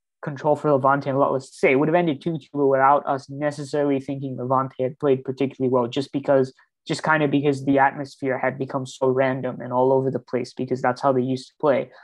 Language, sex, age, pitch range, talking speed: English, male, 20-39, 135-150 Hz, 235 wpm